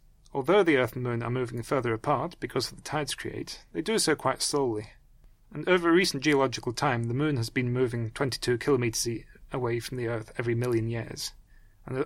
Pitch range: 115-140 Hz